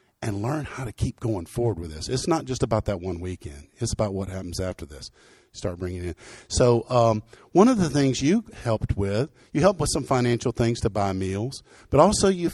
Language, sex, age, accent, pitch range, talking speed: English, male, 50-69, American, 105-135 Hz, 225 wpm